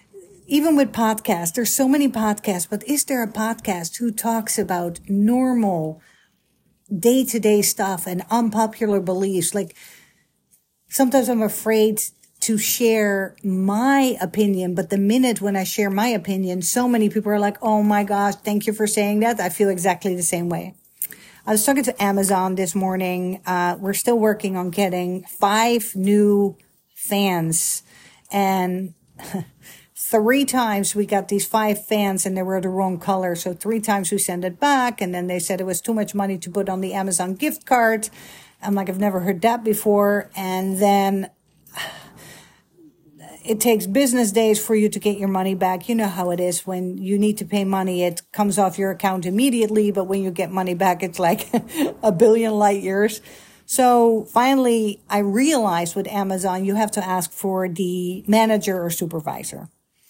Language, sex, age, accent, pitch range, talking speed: English, female, 50-69, American, 185-220 Hz, 175 wpm